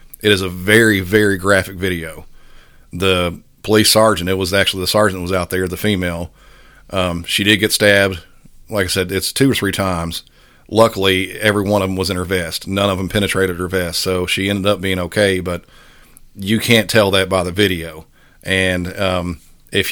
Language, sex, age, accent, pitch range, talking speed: English, male, 50-69, American, 90-105 Hz, 200 wpm